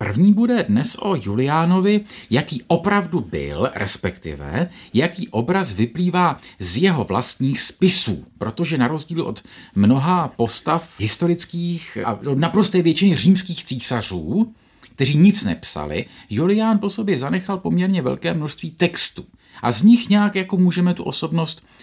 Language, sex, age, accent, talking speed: Czech, male, 50-69, Slovak, 130 wpm